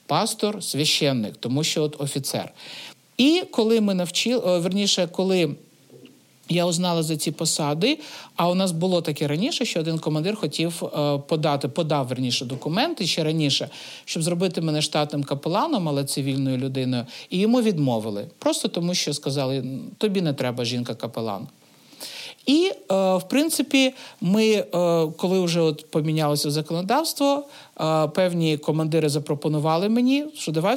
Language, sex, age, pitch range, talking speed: Ukrainian, male, 50-69, 145-205 Hz, 135 wpm